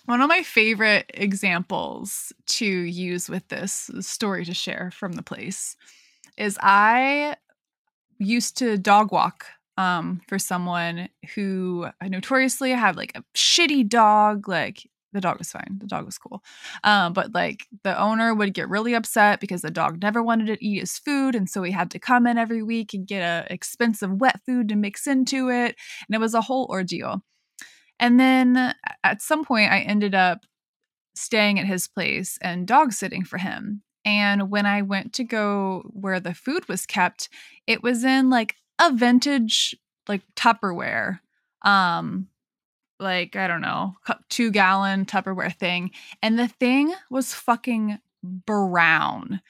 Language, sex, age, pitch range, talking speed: English, female, 20-39, 190-240 Hz, 165 wpm